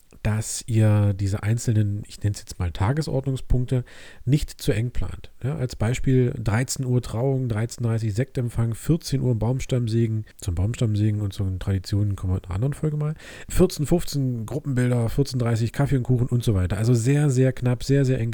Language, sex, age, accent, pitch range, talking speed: German, male, 40-59, German, 105-130 Hz, 175 wpm